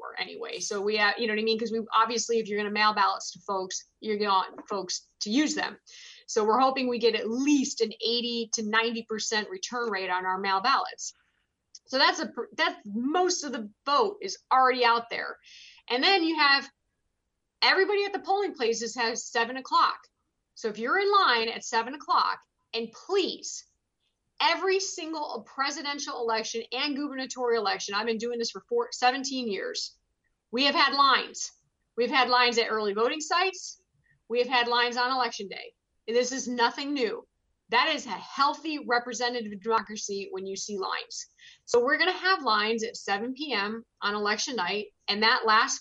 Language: English